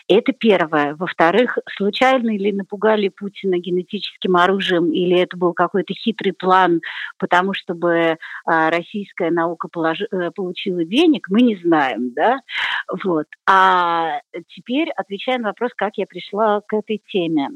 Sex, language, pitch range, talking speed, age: female, Russian, 170-215 Hz, 125 wpm, 40-59